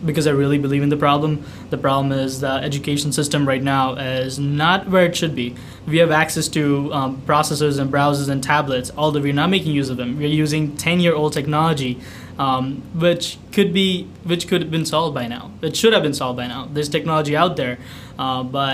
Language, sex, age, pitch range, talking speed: English, male, 20-39, 135-165 Hz, 220 wpm